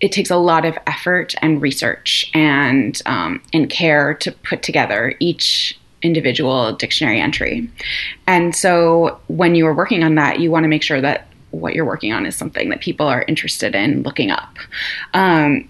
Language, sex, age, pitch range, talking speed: English, female, 20-39, 145-175 Hz, 180 wpm